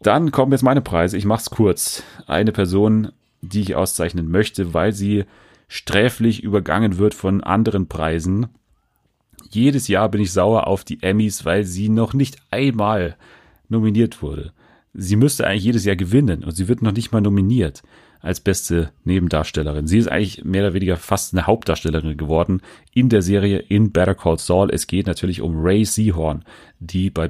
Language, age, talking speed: German, 30-49, 170 wpm